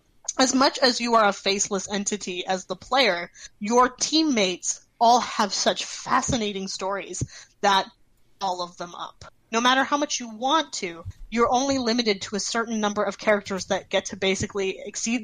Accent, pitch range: American, 190-240 Hz